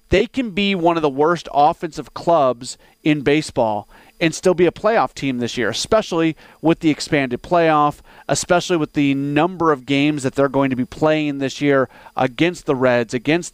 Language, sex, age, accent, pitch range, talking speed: English, male, 40-59, American, 135-165 Hz, 185 wpm